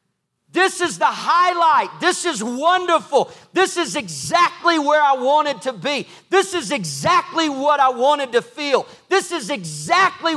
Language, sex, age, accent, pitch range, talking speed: English, male, 40-59, American, 240-345 Hz, 150 wpm